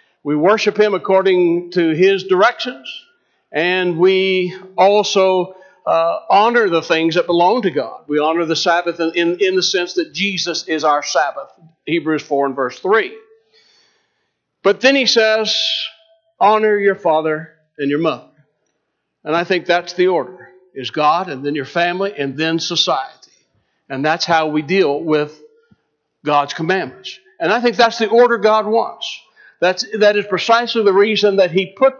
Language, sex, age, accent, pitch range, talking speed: English, male, 60-79, American, 170-220 Hz, 160 wpm